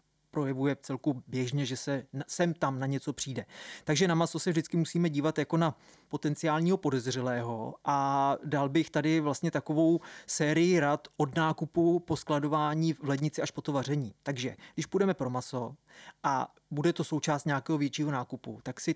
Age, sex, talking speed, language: 30-49, male, 170 wpm, Czech